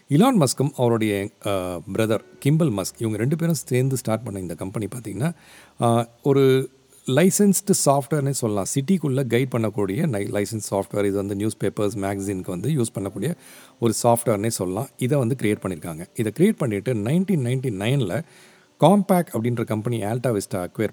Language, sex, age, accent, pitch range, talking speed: Tamil, male, 40-59, native, 100-150 Hz, 145 wpm